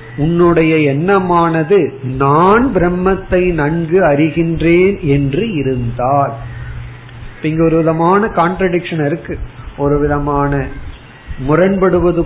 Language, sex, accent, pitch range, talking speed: Tamil, male, native, 135-170 Hz, 80 wpm